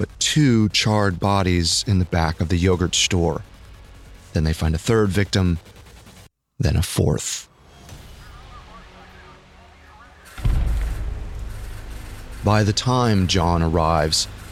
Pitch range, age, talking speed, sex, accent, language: 90-105 Hz, 30-49, 105 wpm, male, American, English